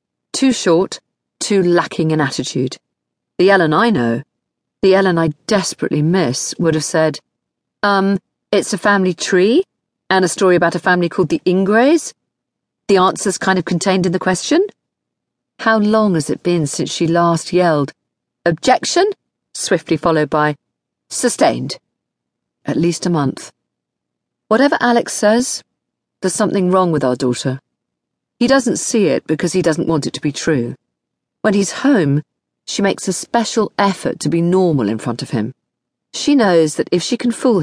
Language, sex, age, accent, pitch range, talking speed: English, female, 40-59, British, 140-195 Hz, 160 wpm